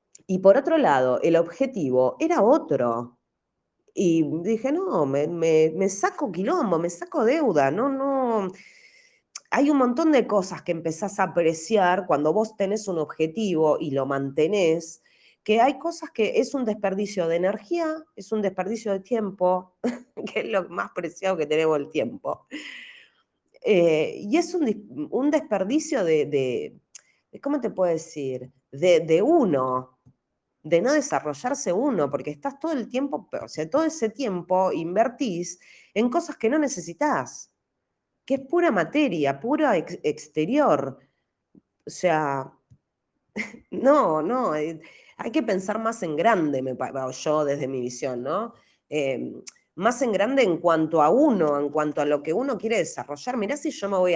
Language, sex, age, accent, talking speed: Spanish, female, 20-39, Argentinian, 155 wpm